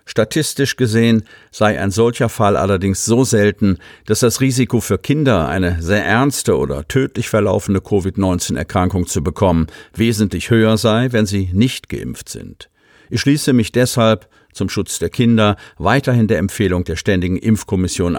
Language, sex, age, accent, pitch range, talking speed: German, male, 50-69, German, 90-115 Hz, 150 wpm